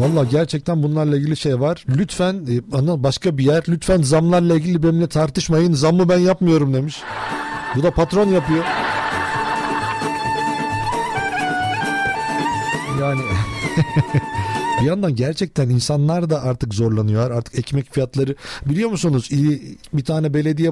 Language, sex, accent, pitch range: Turkish, male, native, 140-185 Hz